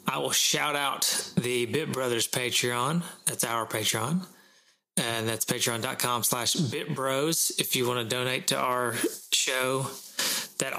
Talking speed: 140 wpm